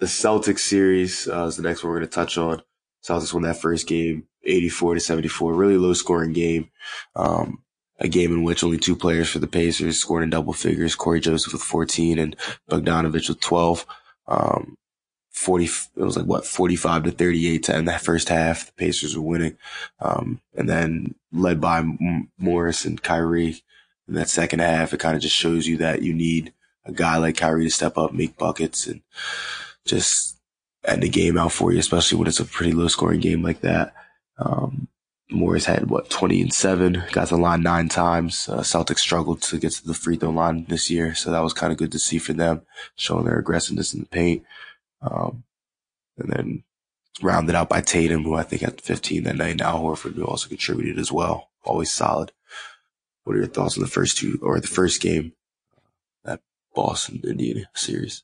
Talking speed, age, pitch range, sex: 200 wpm, 20-39, 80-85 Hz, male